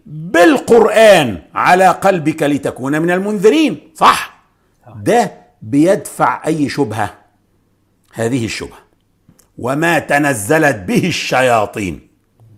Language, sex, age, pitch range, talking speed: English, male, 50-69, 145-210 Hz, 80 wpm